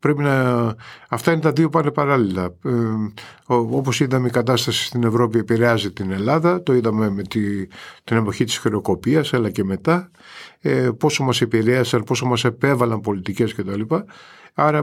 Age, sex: 50-69, male